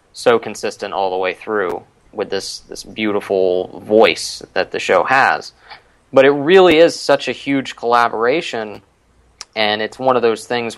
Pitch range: 100-120 Hz